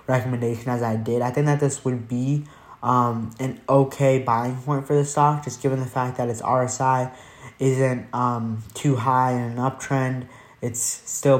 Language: English